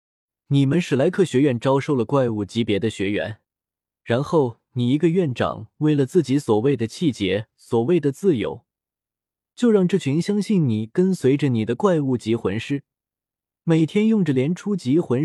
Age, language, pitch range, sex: 20-39, Chinese, 115-165 Hz, male